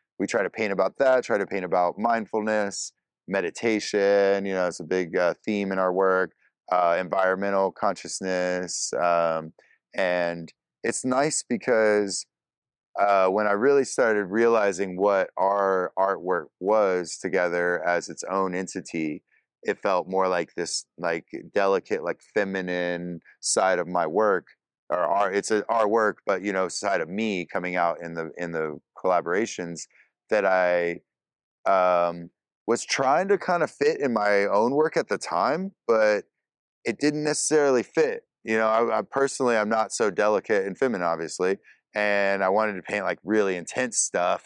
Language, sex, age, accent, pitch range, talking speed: English, male, 30-49, American, 90-115 Hz, 160 wpm